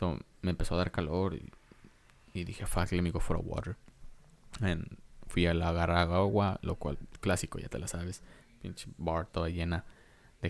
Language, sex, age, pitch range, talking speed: English, male, 20-39, 85-110 Hz, 195 wpm